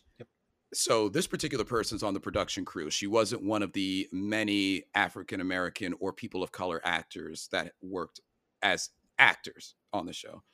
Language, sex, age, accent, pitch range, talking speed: English, male, 40-59, American, 95-110 Hz, 160 wpm